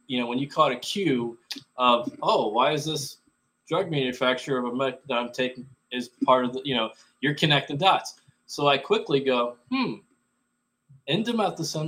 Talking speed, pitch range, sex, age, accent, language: 170 wpm, 130-165 Hz, male, 20-39, American, English